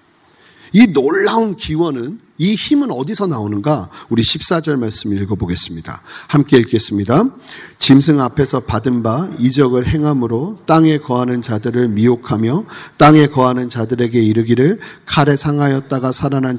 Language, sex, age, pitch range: Korean, male, 40-59, 130-215 Hz